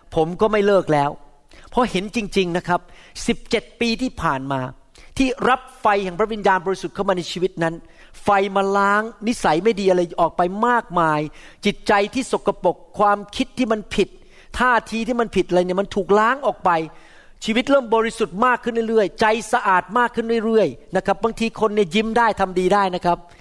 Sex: male